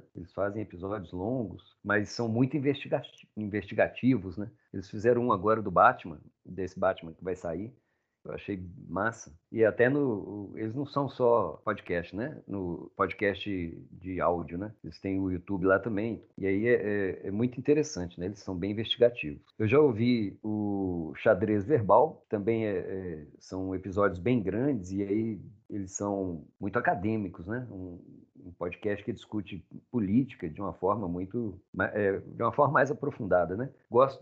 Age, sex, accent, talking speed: 40-59, male, Brazilian, 165 wpm